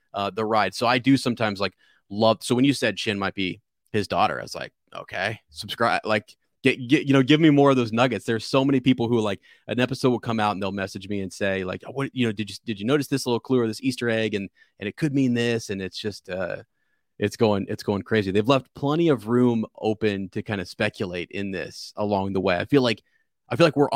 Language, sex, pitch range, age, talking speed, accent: English, male, 100-125 Hz, 30-49, 265 wpm, American